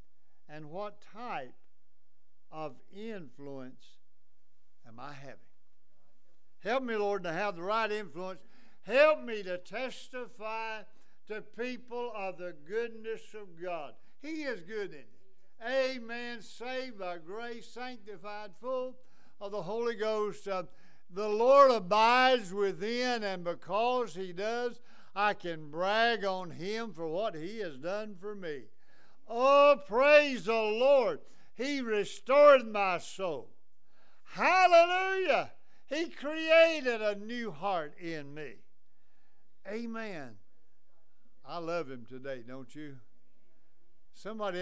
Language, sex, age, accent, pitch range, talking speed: English, male, 60-79, American, 170-240 Hz, 115 wpm